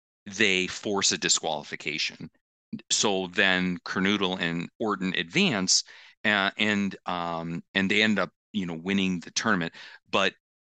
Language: English